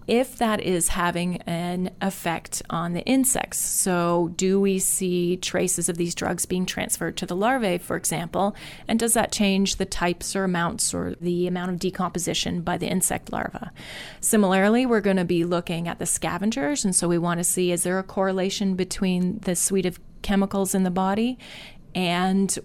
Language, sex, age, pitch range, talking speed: English, female, 30-49, 175-200 Hz, 185 wpm